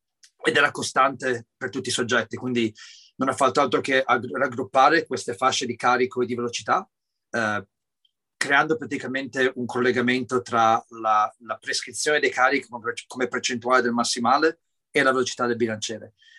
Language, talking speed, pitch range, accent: Italian, 155 wpm, 115-135 Hz, native